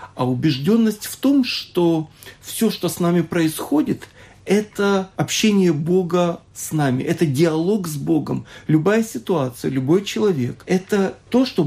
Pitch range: 155-195 Hz